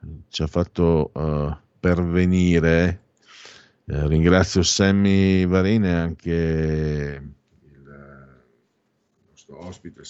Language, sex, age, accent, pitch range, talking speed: Italian, male, 50-69, native, 80-105 Hz, 95 wpm